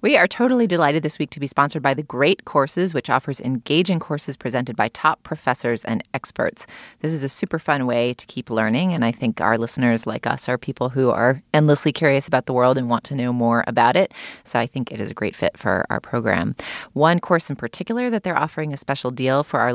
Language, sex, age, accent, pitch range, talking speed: English, female, 30-49, American, 125-155 Hz, 235 wpm